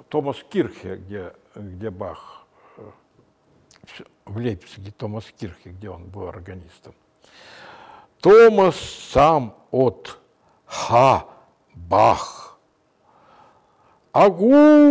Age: 60-79